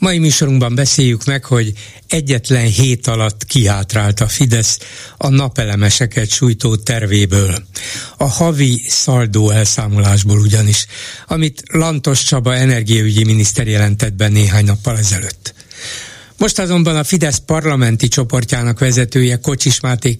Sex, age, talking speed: male, 60-79, 115 wpm